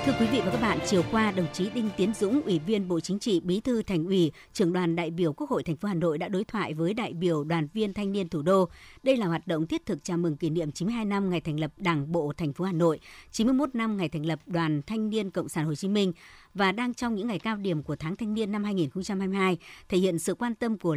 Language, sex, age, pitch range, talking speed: Vietnamese, male, 60-79, 165-215 Hz, 280 wpm